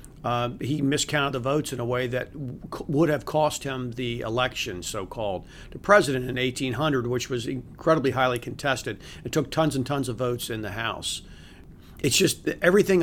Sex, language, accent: male, English, American